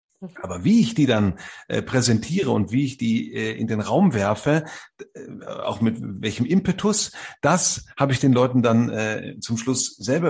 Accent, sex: German, male